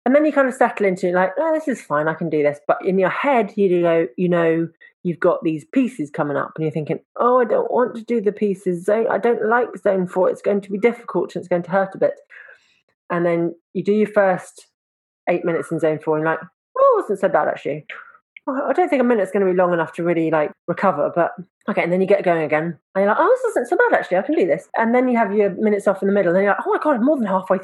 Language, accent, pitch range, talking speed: English, British, 170-240 Hz, 295 wpm